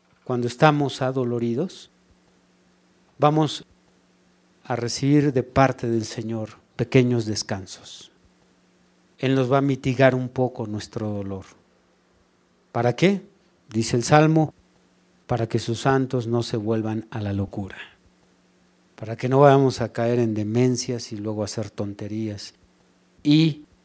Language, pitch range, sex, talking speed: Spanish, 110-150 Hz, male, 125 wpm